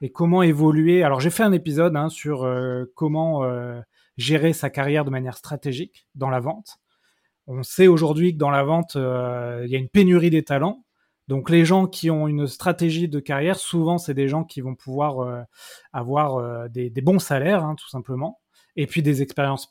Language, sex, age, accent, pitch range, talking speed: French, male, 20-39, French, 135-170 Hz, 205 wpm